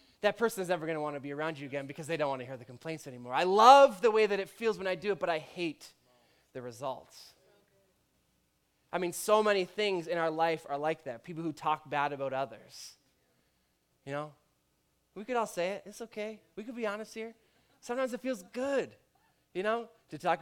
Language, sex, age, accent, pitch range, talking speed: English, male, 20-39, American, 135-185 Hz, 225 wpm